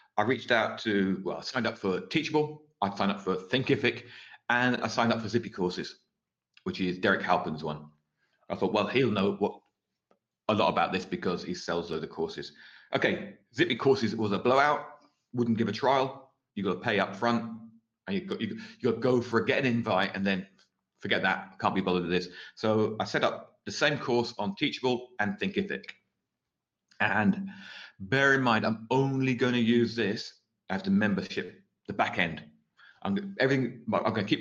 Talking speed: 195 wpm